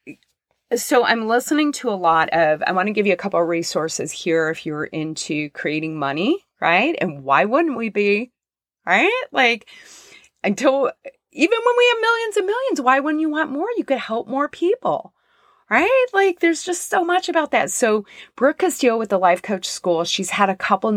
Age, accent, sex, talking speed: 30-49, American, female, 195 wpm